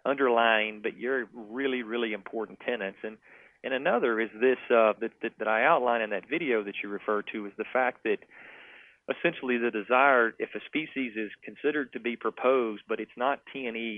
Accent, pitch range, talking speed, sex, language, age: American, 105-120 Hz, 190 wpm, male, English, 40-59